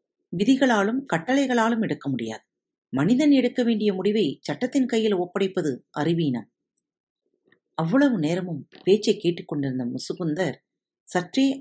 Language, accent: Tamil, native